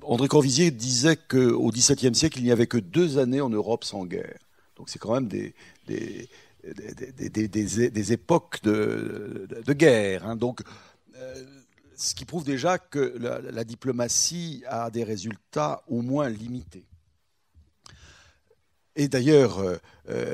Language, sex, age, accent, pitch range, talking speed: French, male, 60-79, French, 105-135 Hz, 145 wpm